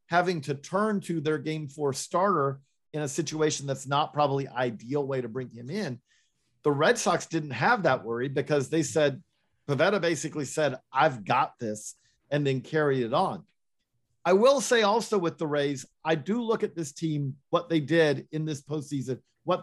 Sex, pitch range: male, 130-170 Hz